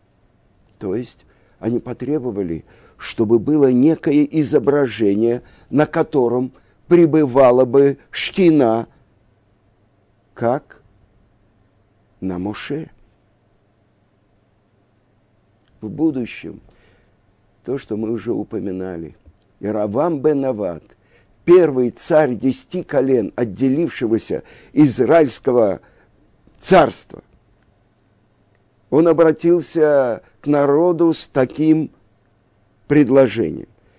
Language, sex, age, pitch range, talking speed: Russian, male, 50-69, 105-150 Hz, 70 wpm